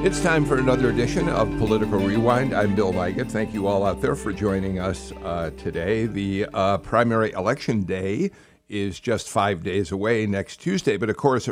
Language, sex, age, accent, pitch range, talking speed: English, male, 60-79, American, 100-130 Hz, 190 wpm